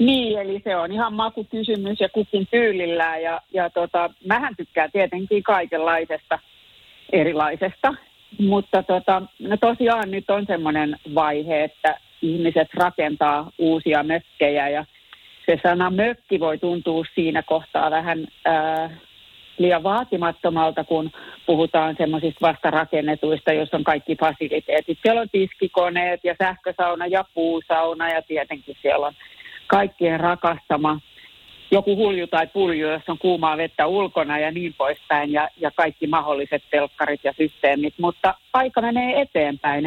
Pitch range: 155-190 Hz